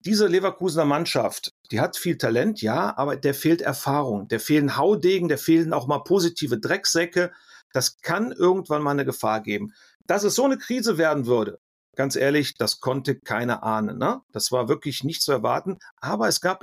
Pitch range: 125-175 Hz